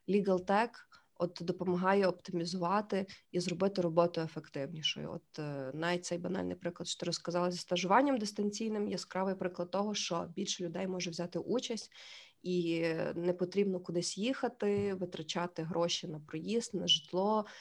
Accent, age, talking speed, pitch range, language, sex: native, 20-39, 135 wpm, 170-195 Hz, Ukrainian, female